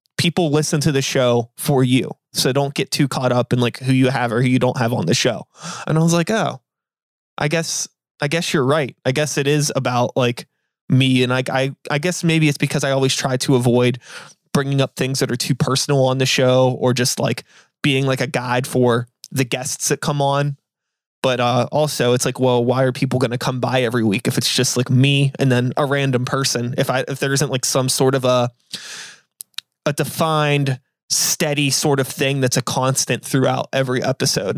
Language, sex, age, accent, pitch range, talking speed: English, male, 20-39, American, 130-150 Hz, 220 wpm